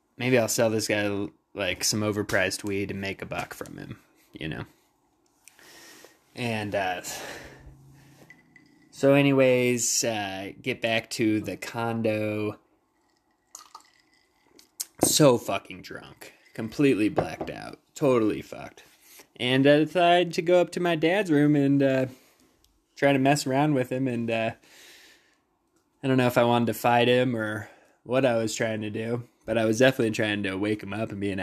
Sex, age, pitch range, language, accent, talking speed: male, 20-39, 105-135 Hz, English, American, 160 wpm